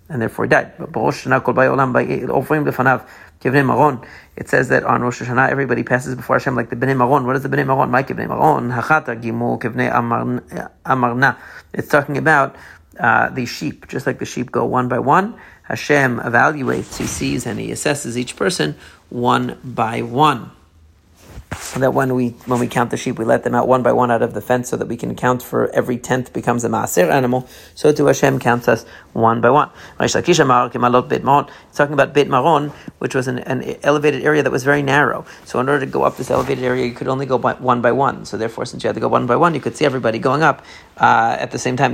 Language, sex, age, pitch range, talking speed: English, male, 40-59, 120-140 Hz, 205 wpm